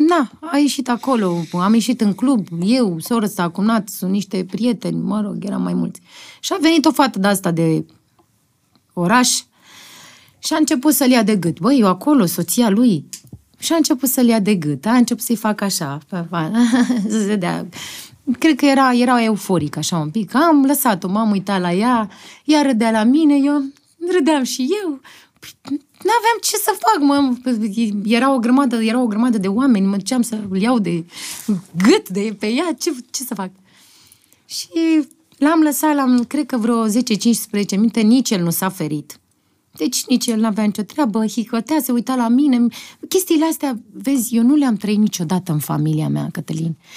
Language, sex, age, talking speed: Romanian, female, 20-39, 185 wpm